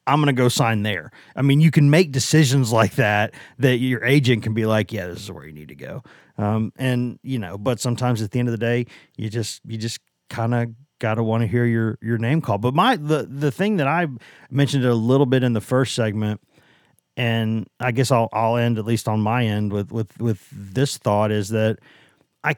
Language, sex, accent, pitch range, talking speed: English, male, American, 115-145 Hz, 230 wpm